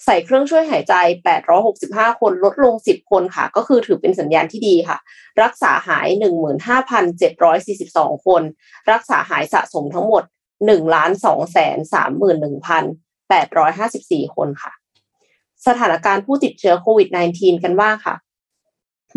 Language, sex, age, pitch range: Thai, female, 20-39, 175-260 Hz